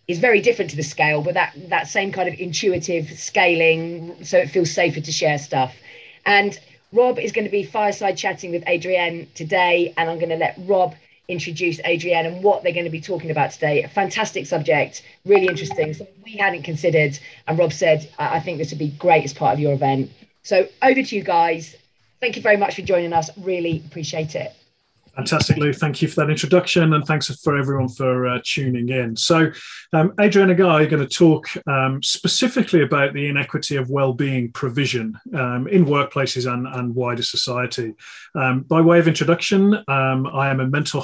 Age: 30-49